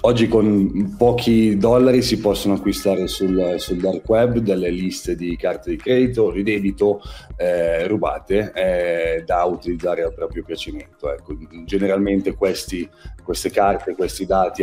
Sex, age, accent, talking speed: male, 40-59, native, 145 wpm